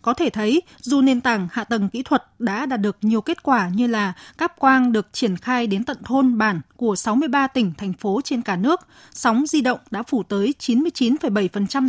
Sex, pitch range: female, 160-255 Hz